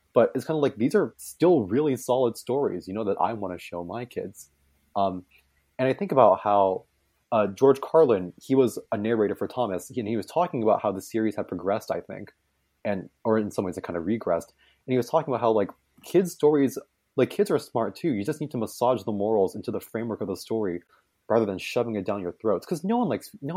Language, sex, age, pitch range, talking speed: English, male, 20-39, 100-135 Hz, 235 wpm